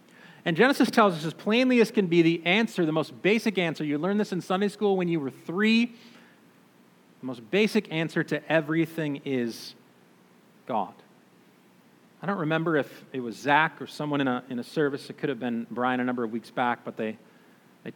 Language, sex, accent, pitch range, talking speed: English, male, American, 115-170 Hz, 200 wpm